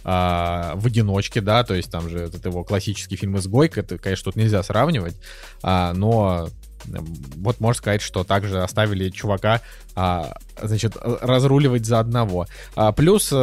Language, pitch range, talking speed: Russian, 95-125 Hz, 135 wpm